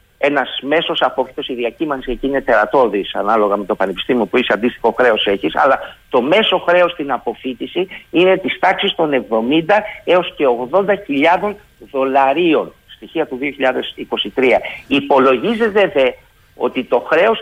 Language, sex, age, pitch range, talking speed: Greek, male, 50-69, 130-185 Hz, 135 wpm